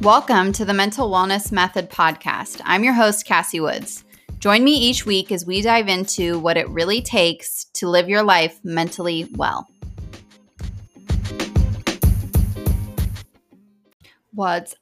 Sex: female